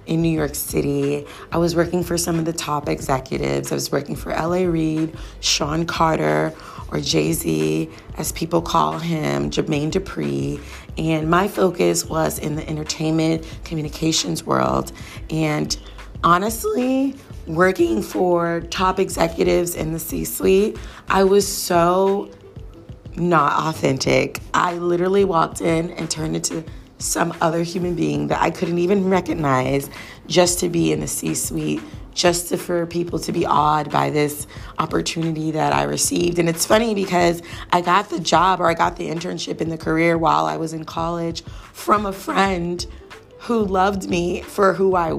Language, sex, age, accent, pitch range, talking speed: English, female, 30-49, American, 110-175 Hz, 155 wpm